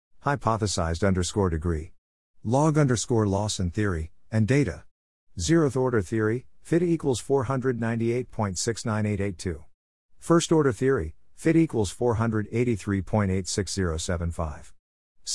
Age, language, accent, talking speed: 50-69, English, American, 85 wpm